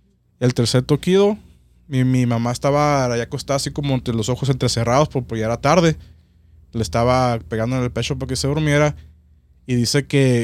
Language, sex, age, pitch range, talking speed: Spanish, male, 20-39, 110-145 Hz, 180 wpm